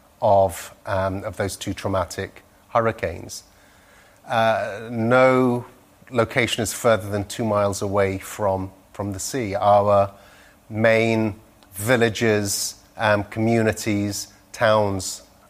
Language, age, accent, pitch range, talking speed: English, 30-49, British, 95-115 Hz, 95 wpm